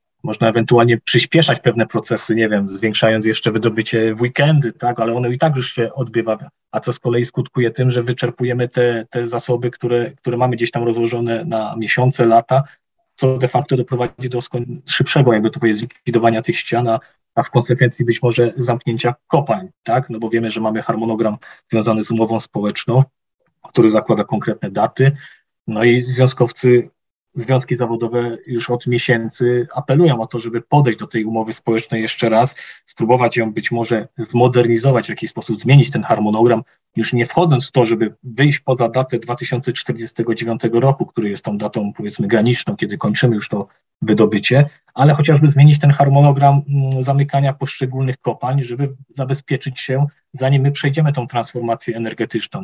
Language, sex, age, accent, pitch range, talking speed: Polish, male, 20-39, native, 115-130 Hz, 165 wpm